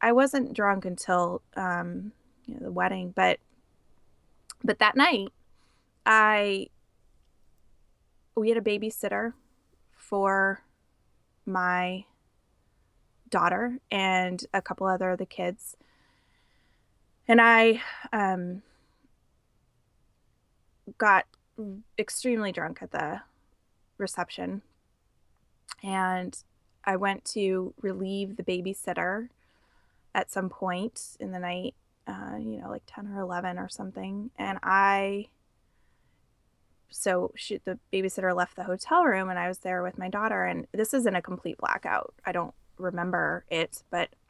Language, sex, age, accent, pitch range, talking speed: English, female, 20-39, American, 180-210 Hz, 120 wpm